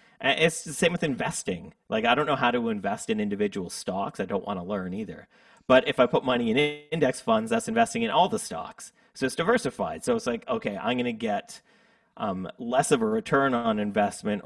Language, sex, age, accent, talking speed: English, male, 30-49, American, 220 wpm